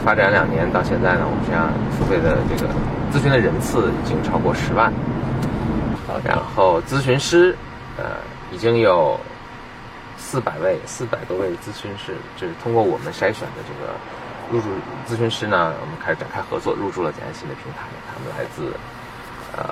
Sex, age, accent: male, 20-39, native